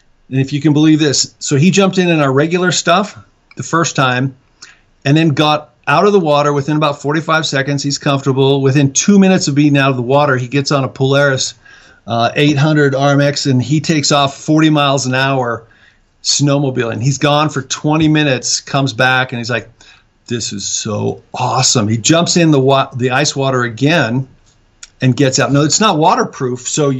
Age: 50-69